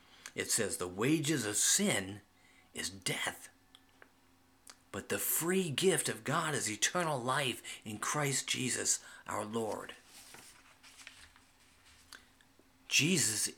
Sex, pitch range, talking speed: male, 100-140 Hz, 100 wpm